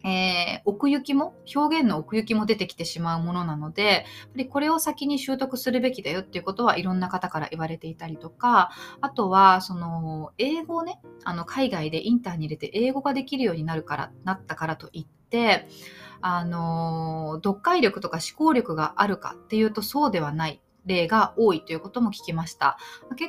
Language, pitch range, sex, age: Japanese, 165-245 Hz, female, 20-39